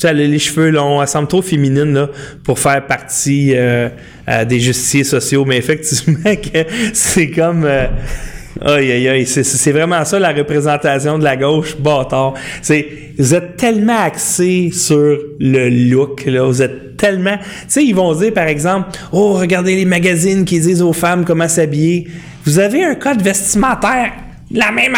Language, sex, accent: French, male, Canadian